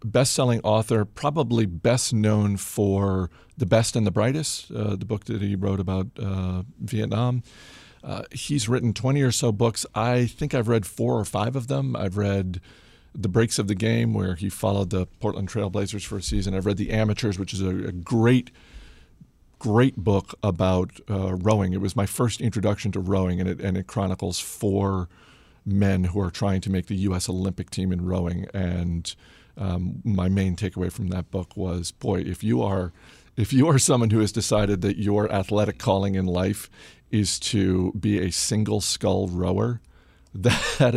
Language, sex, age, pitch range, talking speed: English, male, 40-59, 95-110 Hz, 180 wpm